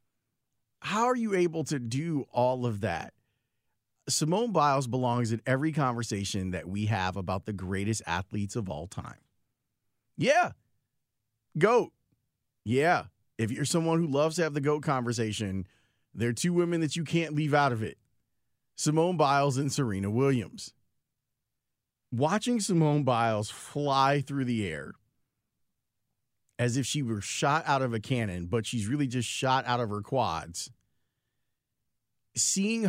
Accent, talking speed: American, 145 wpm